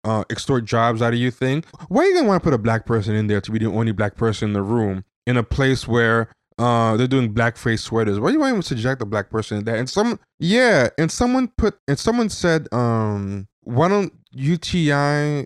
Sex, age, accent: male, 20-39, American